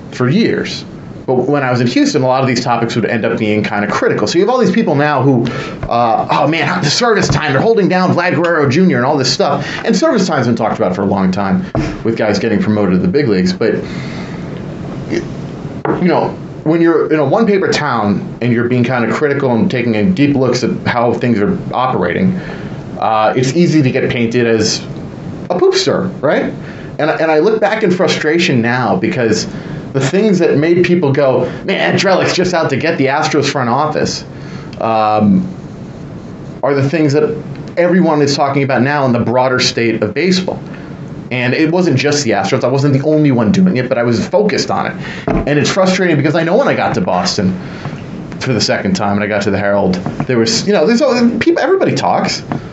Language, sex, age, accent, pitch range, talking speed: English, male, 30-49, American, 120-170 Hz, 210 wpm